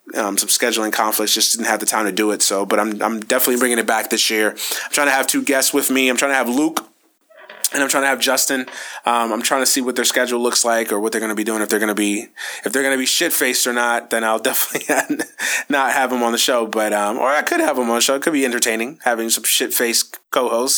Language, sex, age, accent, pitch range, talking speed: English, male, 20-39, American, 110-140 Hz, 285 wpm